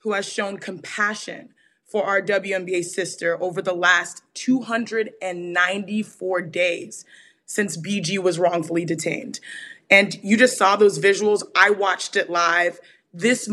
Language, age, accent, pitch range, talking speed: English, 20-39, American, 190-230 Hz, 130 wpm